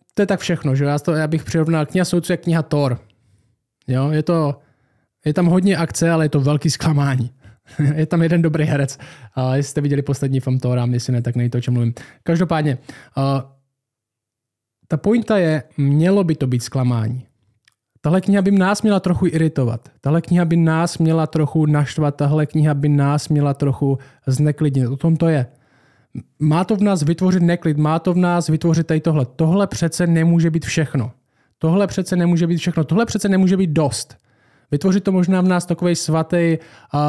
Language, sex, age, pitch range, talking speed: Czech, male, 20-39, 140-170 Hz, 190 wpm